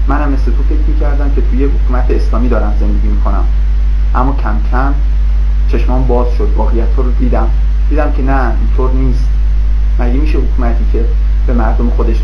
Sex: male